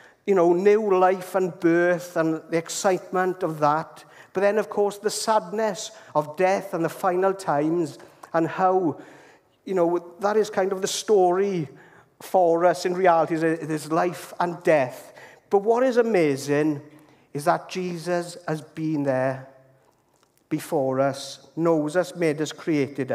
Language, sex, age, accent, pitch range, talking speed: English, male, 50-69, British, 155-200 Hz, 155 wpm